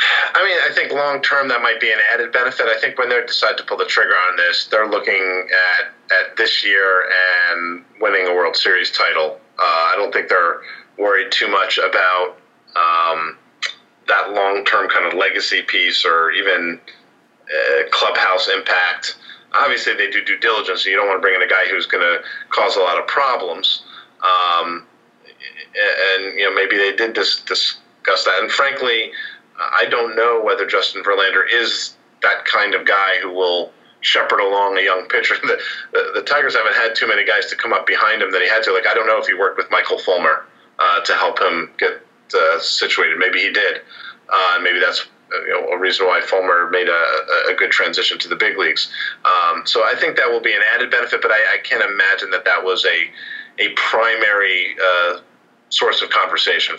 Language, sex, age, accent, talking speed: English, male, 40-59, American, 200 wpm